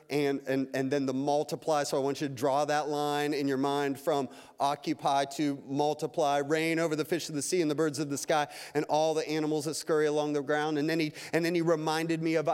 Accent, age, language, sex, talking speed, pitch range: American, 30-49, English, male, 250 wpm, 150-180 Hz